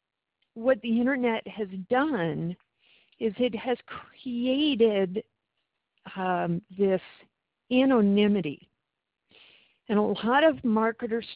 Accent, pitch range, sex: American, 190-240 Hz, female